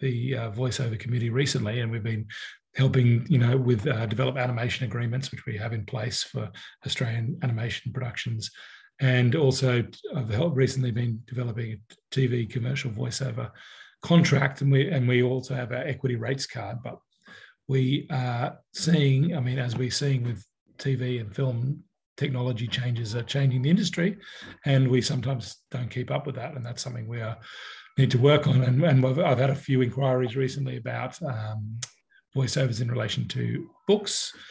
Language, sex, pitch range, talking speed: English, male, 120-140 Hz, 170 wpm